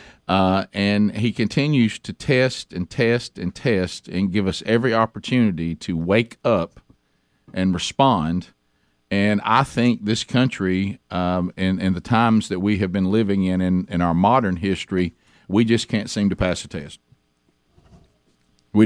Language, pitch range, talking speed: English, 90-115 Hz, 155 wpm